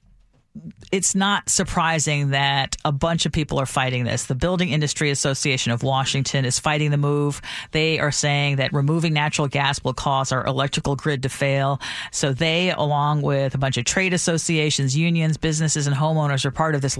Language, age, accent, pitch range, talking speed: English, 40-59, American, 135-165 Hz, 185 wpm